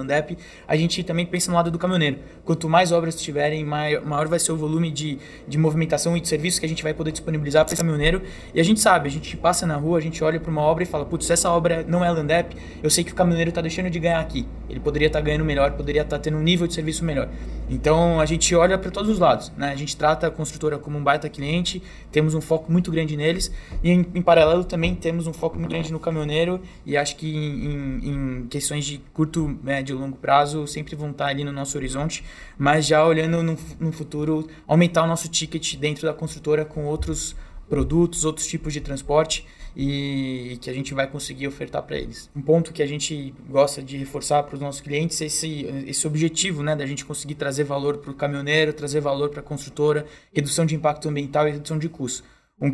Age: 20-39